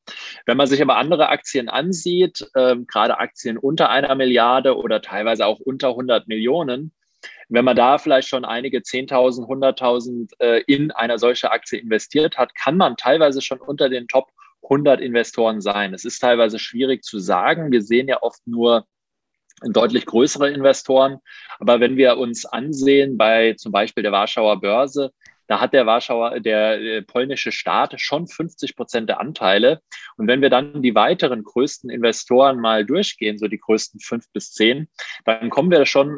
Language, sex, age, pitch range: German, male, 20-39, 115-140 Hz